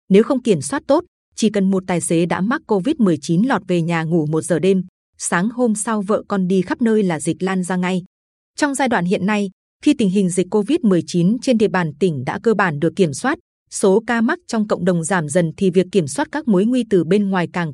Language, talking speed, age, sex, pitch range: Vietnamese, 245 wpm, 20-39, female, 180-225 Hz